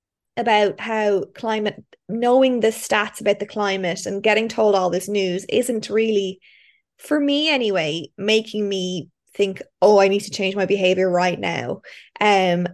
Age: 20-39